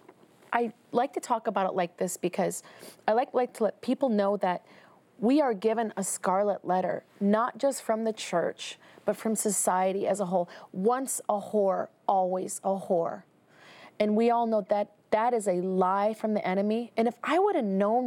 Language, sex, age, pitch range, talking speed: English, female, 40-59, 185-225 Hz, 195 wpm